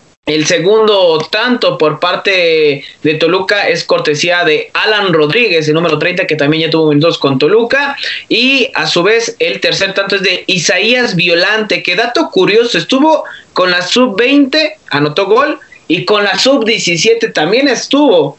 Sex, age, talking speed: male, 30-49, 155 wpm